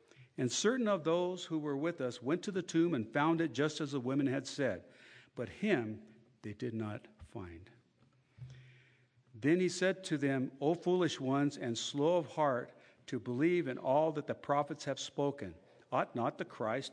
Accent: American